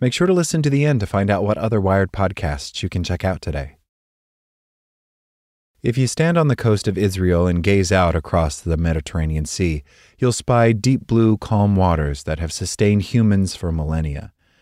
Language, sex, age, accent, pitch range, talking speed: English, male, 30-49, American, 85-115 Hz, 190 wpm